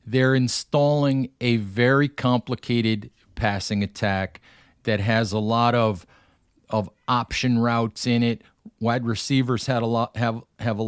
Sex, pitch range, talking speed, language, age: male, 115-130 Hz, 140 wpm, English, 50-69